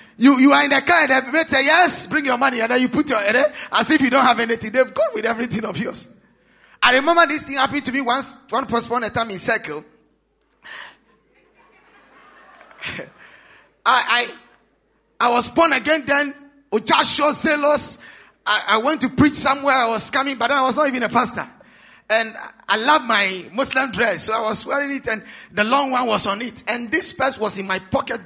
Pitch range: 225-285 Hz